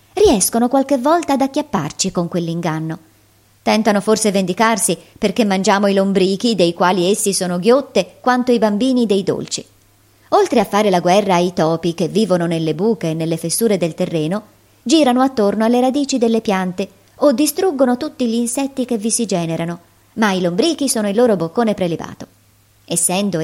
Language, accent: Italian, native